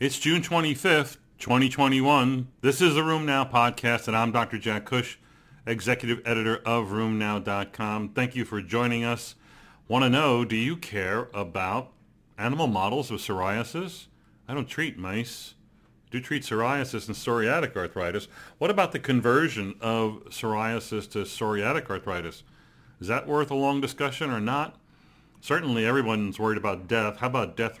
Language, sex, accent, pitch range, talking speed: English, male, American, 105-130 Hz, 155 wpm